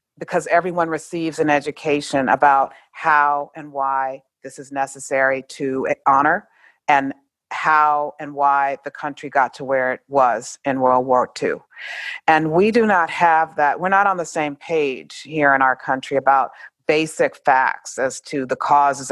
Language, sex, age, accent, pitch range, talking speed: English, female, 40-59, American, 135-160 Hz, 165 wpm